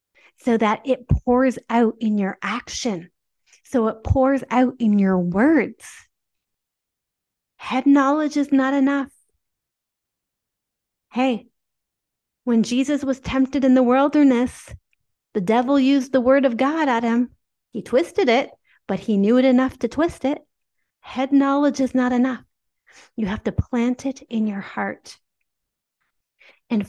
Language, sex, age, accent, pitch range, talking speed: English, female, 40-59, American, 200-265 Hz, 140 wpm